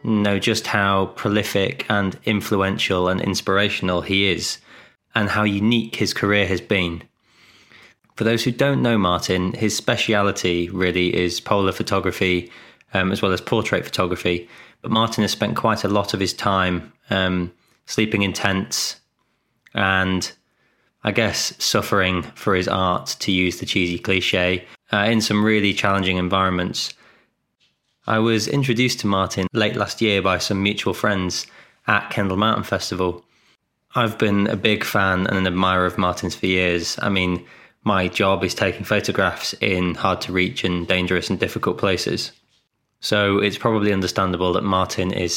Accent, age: British, 20-39